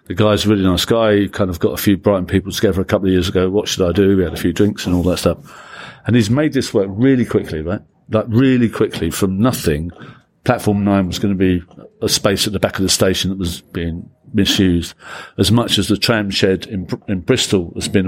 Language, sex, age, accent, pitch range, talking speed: English, male, 50-69, British, 95-115 Hz, 250 wpm